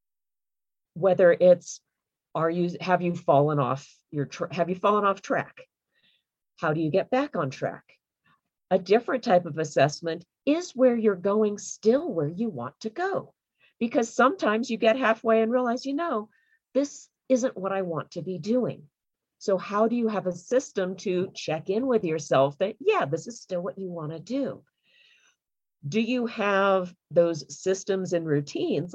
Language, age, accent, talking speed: English, 50-69, American, 170 wpm